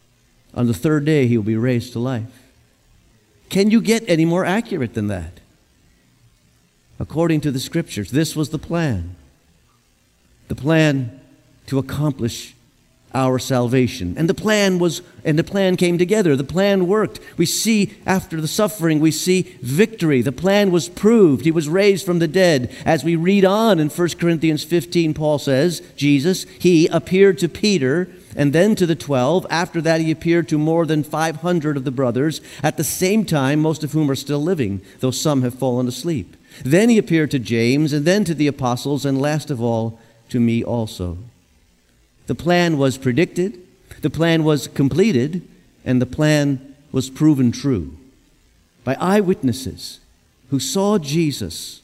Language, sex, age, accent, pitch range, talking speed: English, male, 50-69, American, 125-175 Hz, 165 wpm